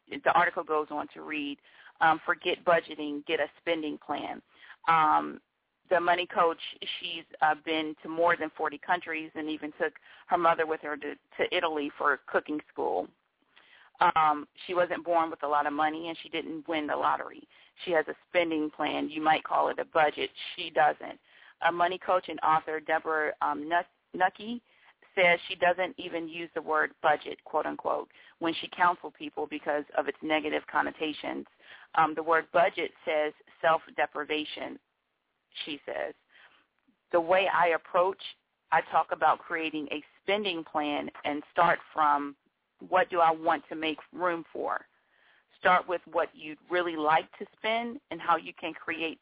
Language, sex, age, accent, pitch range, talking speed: English, female, 40-59, American, 155-175 Hz, 165 wpm